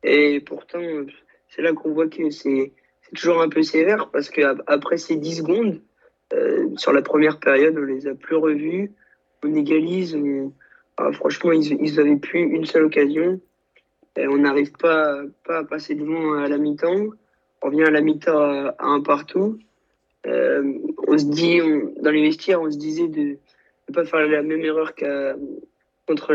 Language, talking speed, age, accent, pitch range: French, 185 wpm, 20-39, French, 145-170 Hz